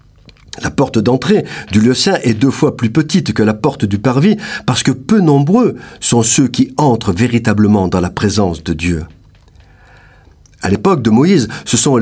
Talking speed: 180 wpm